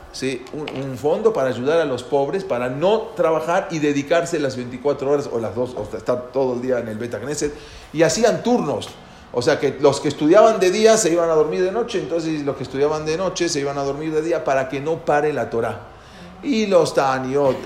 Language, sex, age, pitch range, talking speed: English, male, 40-59, 130-205 Hz, 225 wpm